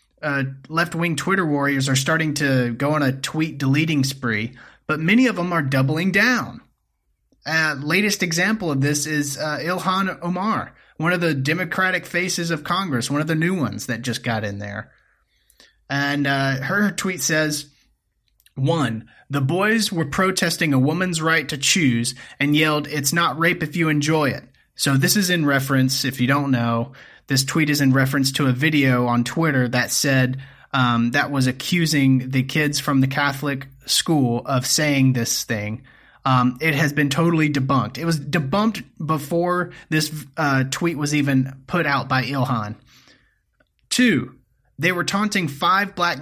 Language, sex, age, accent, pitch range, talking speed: English, male, 30-49, American, 135-170 Hz, 165 wpm